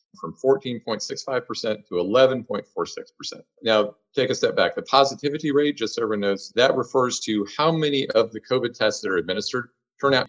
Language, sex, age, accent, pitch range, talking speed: English, male, 50-69, American, 115-150 Hz, 175 wpm